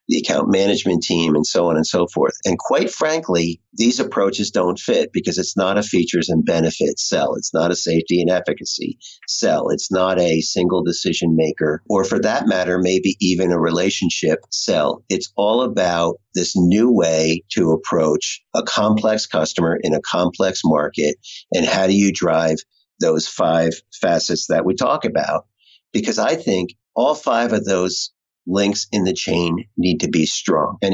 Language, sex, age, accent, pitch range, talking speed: English, male, 50-69, American, 85-105 Hz, 175 wpm